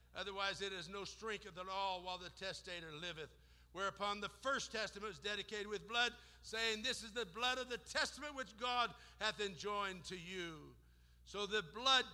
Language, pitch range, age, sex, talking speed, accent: English, 170-235 Hz, 60-79, male, 180 wpm, American